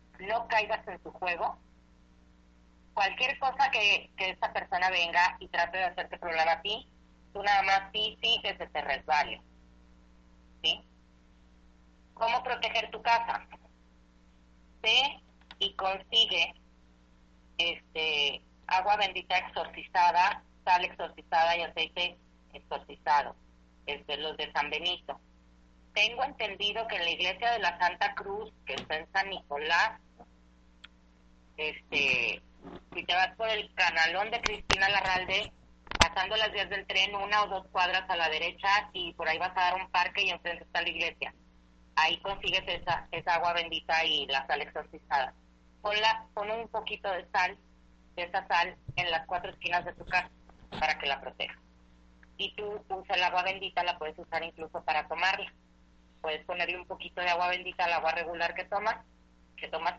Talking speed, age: 155 wpm, 30-49